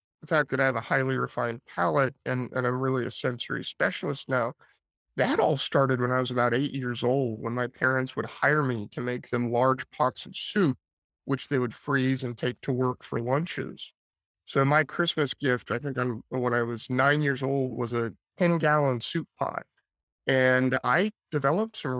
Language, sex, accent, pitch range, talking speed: English, male, American, 125-150 Hz, 195 wpm